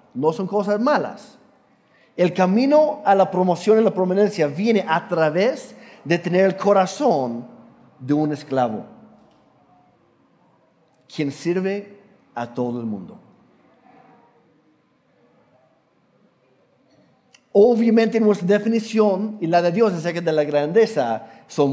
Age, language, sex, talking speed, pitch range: 50-69, Spanish, male, 110 wpm, 170-230 Hz